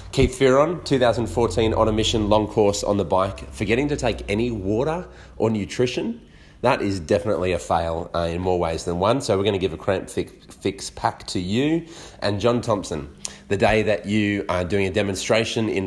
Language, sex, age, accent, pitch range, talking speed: English, male, 30-49, Australian, 95-115 Hz, 200 wpm